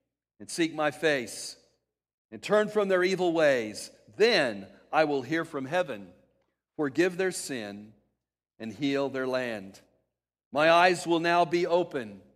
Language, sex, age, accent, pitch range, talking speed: English, male, 50-69, American, 155-195 Hz, 140 wpm